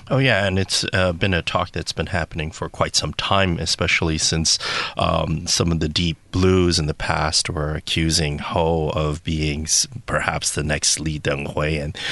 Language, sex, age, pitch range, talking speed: English, male, 30-49, 80-95 Hz, 185 wpm